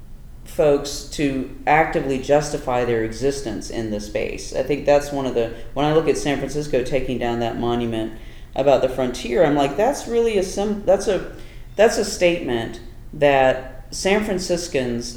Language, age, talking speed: English, 40-59, 160 wpm